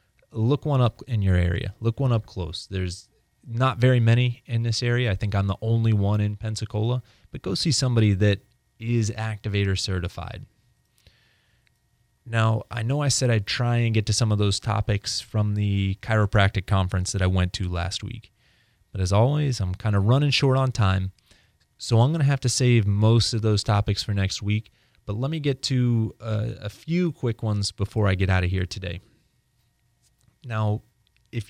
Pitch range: 100-115 Hz